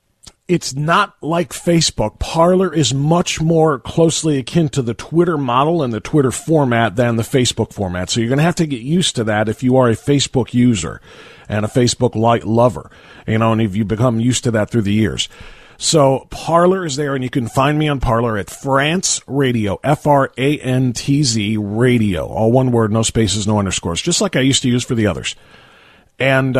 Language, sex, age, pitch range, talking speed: English, male, 40-59, 115-155 Hz, 210 wpm